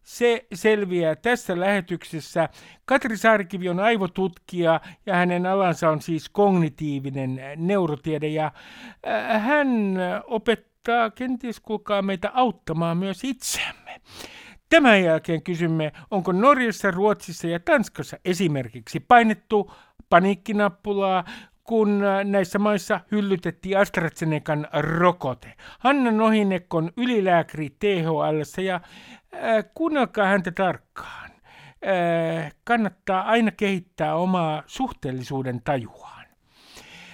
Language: Finnish